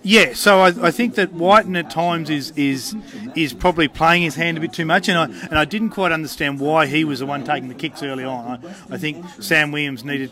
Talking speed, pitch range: 250 wpm, 135-170 Hz